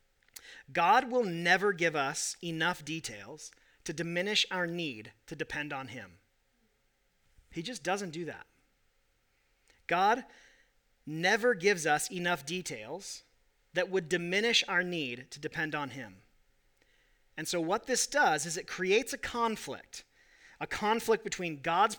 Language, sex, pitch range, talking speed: English, male, 155-205 Hz, 135 wpm